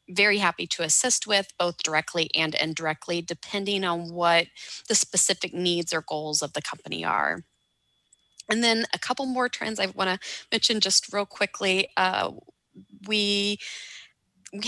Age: 20-39